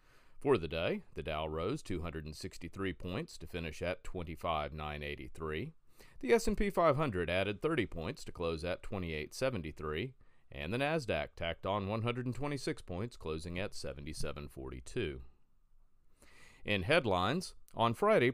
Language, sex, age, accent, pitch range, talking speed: English, male, 40-59, American, 85-120 Hz, 120 wpm